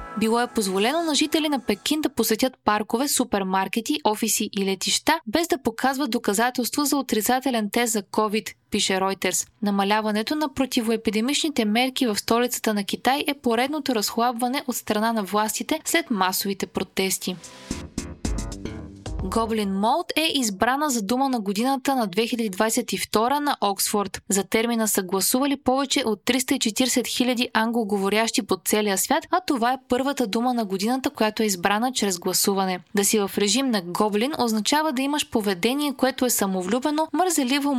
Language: Bulgarian